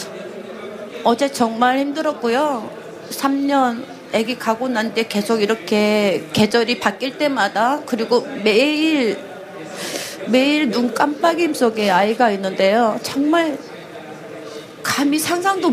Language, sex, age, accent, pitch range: Korean, female, 30-49, native, 200-275 Hz